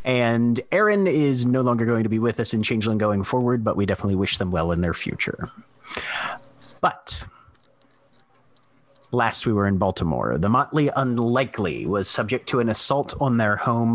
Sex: male